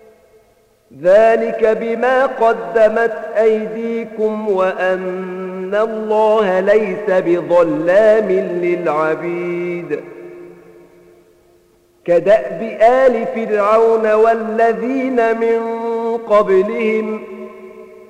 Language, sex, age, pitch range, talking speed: Arabic, male, 50-69, 185-225 Hz, 50 wpm